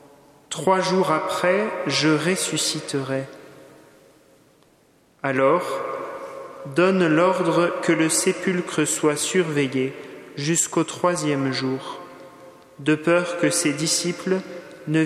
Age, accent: 30-49, French